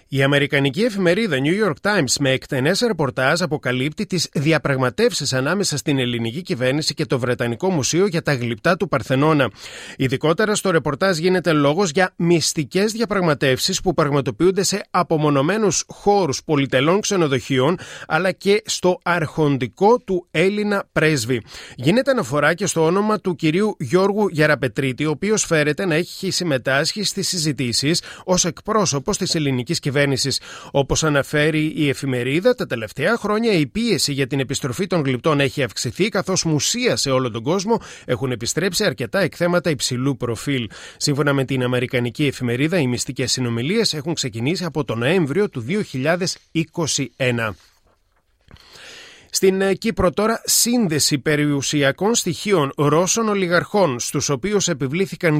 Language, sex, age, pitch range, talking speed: Greek, male, 30-49, 135-190 Hz, 135 wpm